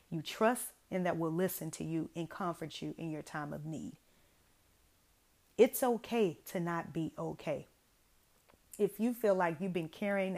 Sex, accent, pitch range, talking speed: female, American, 160-200 Hz, 170 wpm